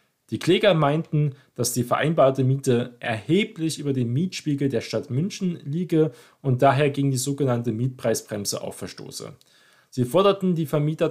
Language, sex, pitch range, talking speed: German, male, 115-155 Hz, 145 wpm